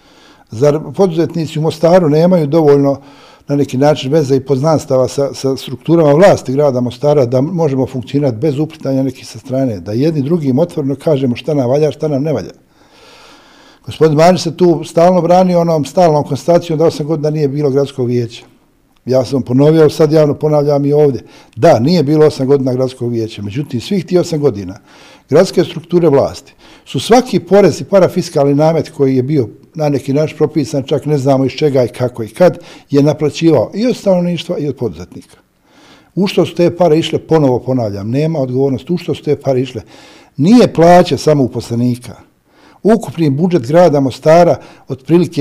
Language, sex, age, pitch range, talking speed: Croatian, male, 60-79, 125-160 Hz, 175 wpm